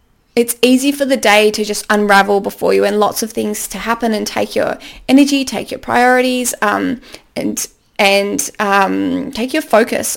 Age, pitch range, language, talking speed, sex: 20-39, 205-260 Hz, English, 175 wpm, female